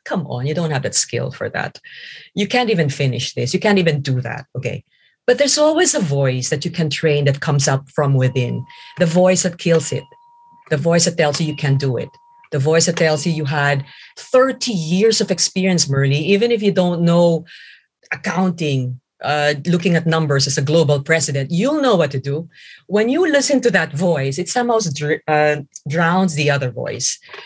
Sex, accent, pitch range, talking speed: female, Filipino, 145-190 Hz, 200 wpm